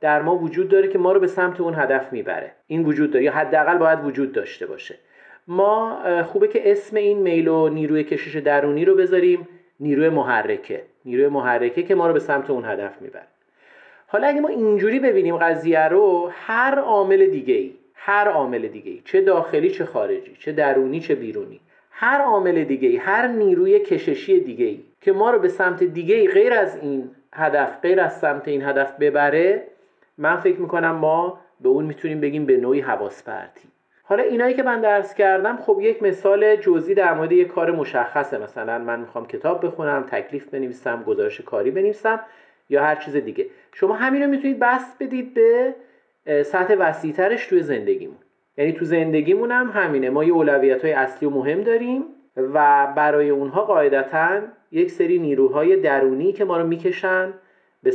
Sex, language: male, Persian